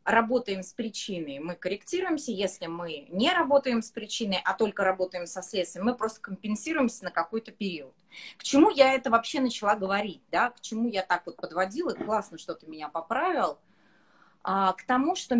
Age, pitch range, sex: 20-39, 190-255 Hz, female